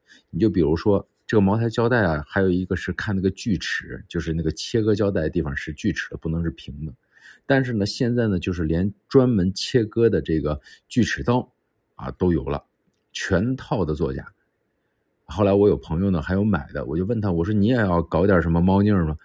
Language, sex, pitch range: Chinese, male, 80-110 Hz